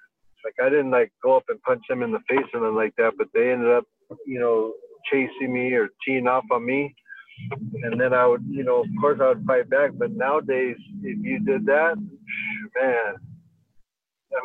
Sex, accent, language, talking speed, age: male, American, English, 205 wpm, 60-79